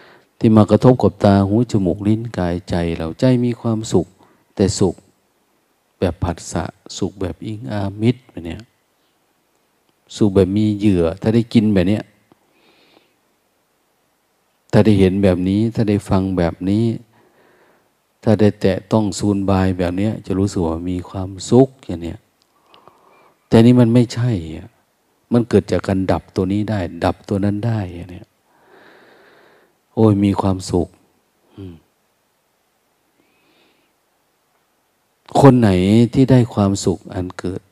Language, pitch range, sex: Thai, 90-110 Hz, male